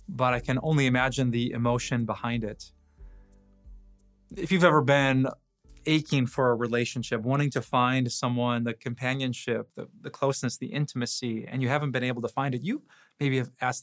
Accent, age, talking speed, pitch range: American, 20-39, 175 wpm, 125-175 Hz